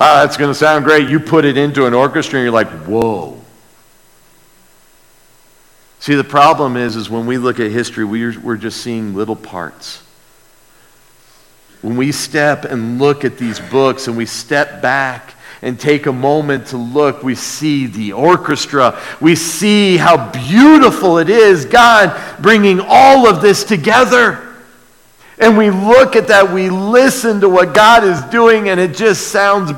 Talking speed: 165 wpm